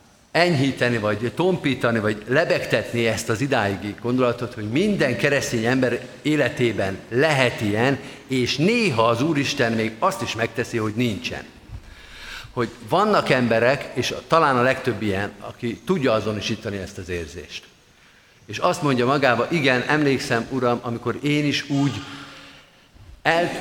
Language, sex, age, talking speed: Hungarian, male, 50-69, 135 wpm